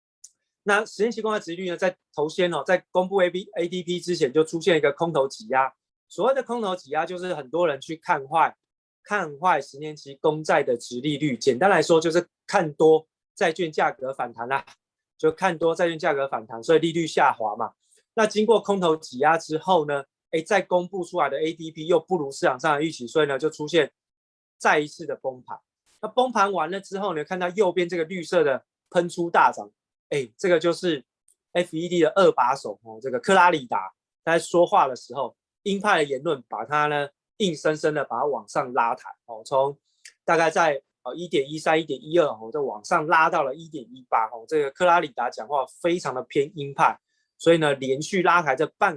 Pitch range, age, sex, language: 150-185 Hz, 20-39, male, Chinese